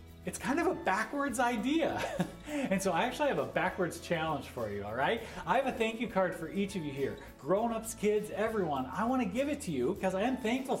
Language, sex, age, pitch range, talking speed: English, male, 40-59, 175-225 Hz, 245 wpm